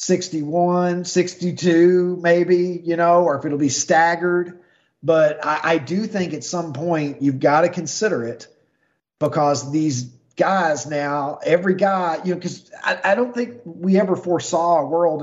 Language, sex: English, male